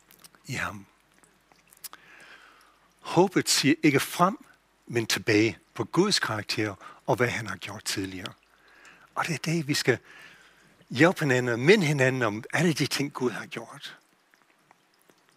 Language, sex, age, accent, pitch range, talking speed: Danish, male, 60-79, German, 120-165 Hz, 135 wpm